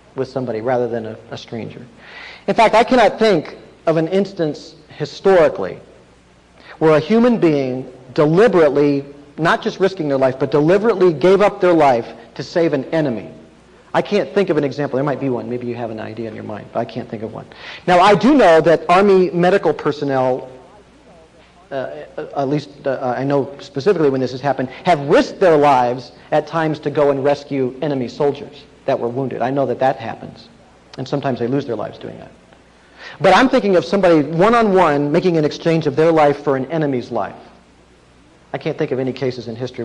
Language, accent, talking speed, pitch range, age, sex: English, American, 195 wpm, 130-185 Hz, 40-59, male